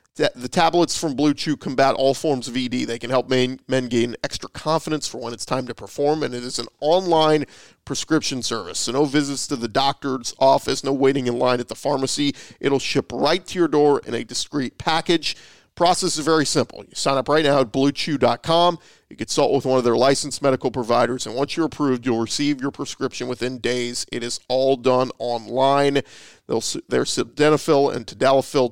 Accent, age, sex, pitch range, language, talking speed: American, 40-59, male, 125-155 Hz, English, 195 wpm